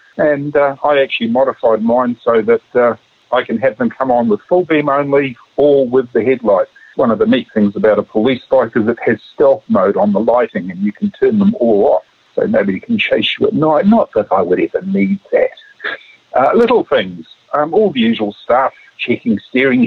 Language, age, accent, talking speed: English, 50-69, Australian, 215 wpm